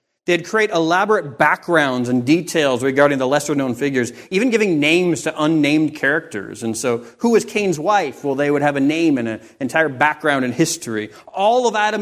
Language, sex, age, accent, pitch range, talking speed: English, male, 30-49, American, 120-165 Hz, 185 wpm